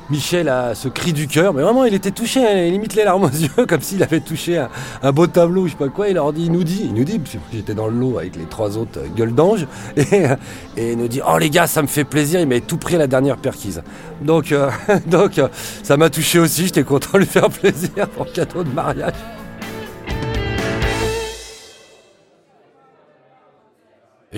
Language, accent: French, French